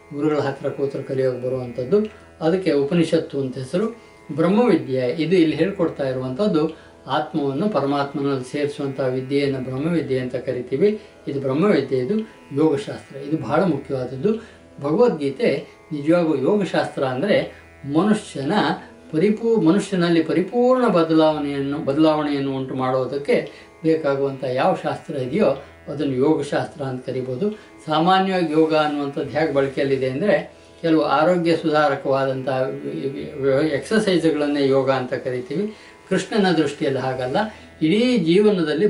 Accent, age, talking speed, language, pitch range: native, 60-79, 100 wpm, Kannada, 135-170 Hz